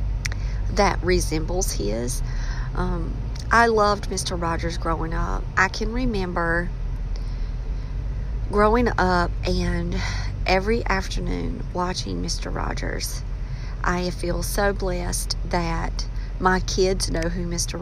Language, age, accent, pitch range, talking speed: English, 40-59, American, 115-185 Hz, 105 wpm